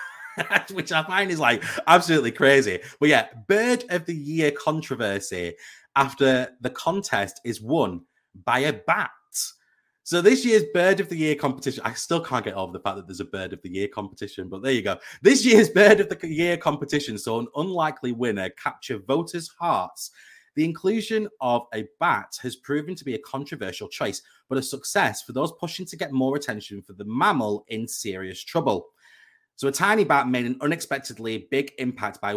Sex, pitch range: male, 110-160 Hz